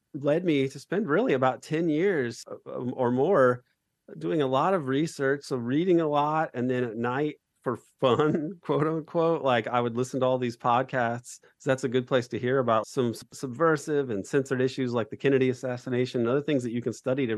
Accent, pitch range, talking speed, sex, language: American, 115-140 Hz, 205 wpm, male, English